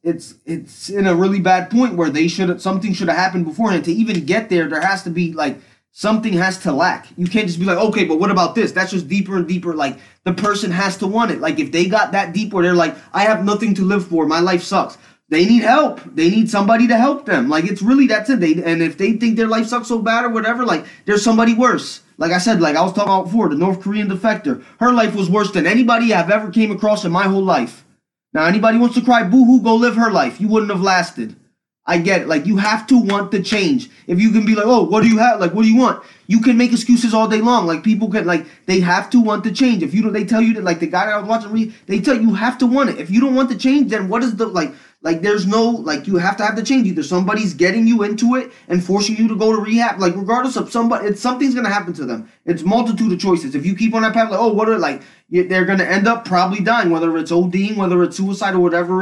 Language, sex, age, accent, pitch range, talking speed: English, male, 20-39, American, 180-225 Hz, 280 wpm